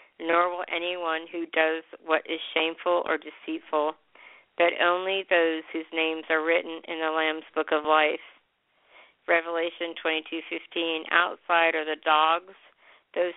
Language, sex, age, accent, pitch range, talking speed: English, female, 50-69, American, 160-195 Hz, 135 wpm